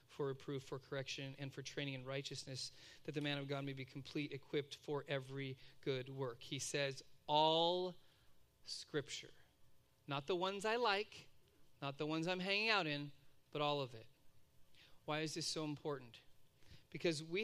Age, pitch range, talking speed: 40-59, 140-170 Hz, 170 wpm